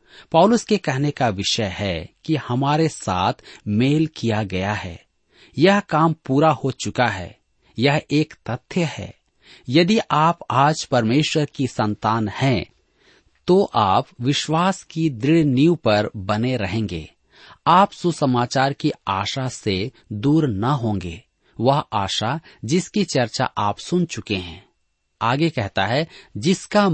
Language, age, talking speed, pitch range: Hindi, 40-59, 130 wpm, 105-155 Hz